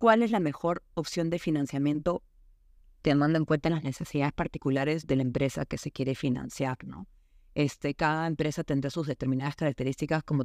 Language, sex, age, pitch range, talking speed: Spanish, female, 30-49, 135-160 Hz, 165 wpm